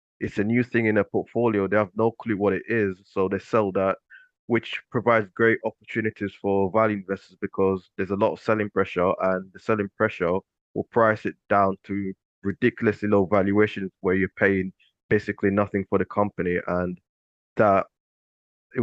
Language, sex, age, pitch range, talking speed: English, male, 20-39, 100-110 Hz, 175 wpm